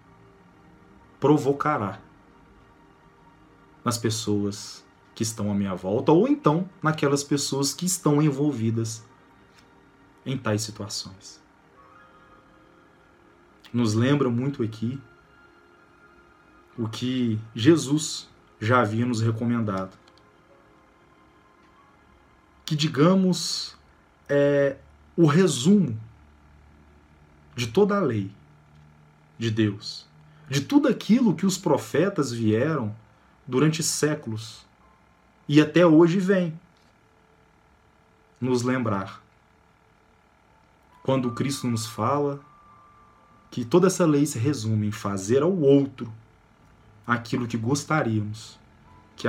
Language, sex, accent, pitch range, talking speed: Portuguese, male, Brazilian, 105-150 Hz, 90 wpm